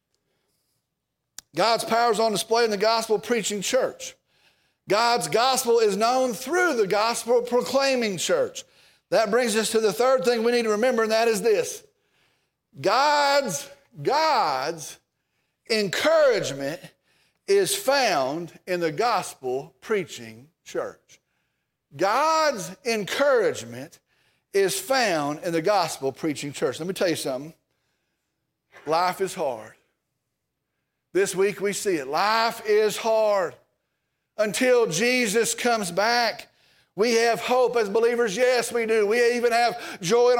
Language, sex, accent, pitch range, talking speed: English, male, American, 215-255 Hz, 120 wpm